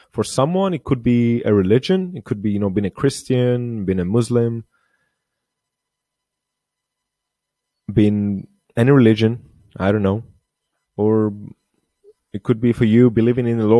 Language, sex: English, male